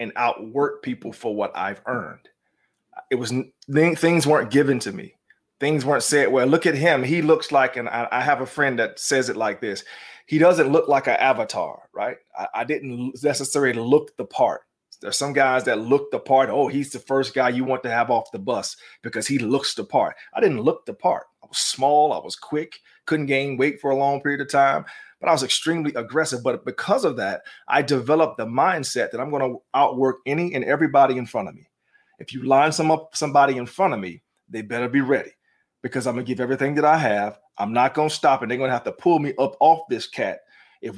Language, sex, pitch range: English, male, 125-155 Hz